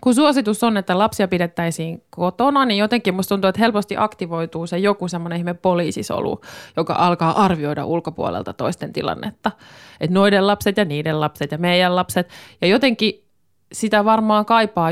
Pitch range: 170-220 Hz